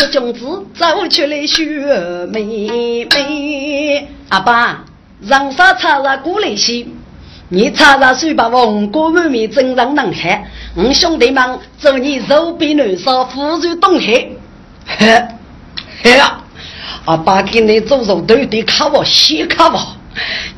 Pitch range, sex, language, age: 220-300 Hz, female, Chinese, 50-69